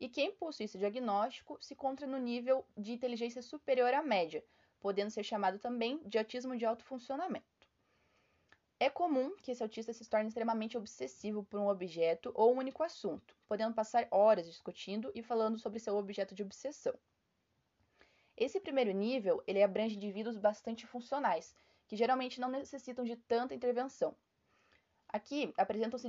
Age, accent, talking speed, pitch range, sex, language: 20-39, Brazilian, 155 wpm, 205-255 Hz, female, Portuguese